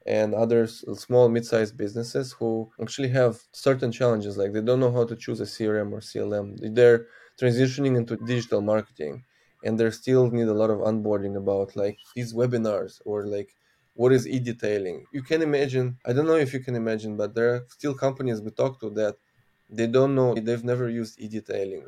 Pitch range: 110-130 Hz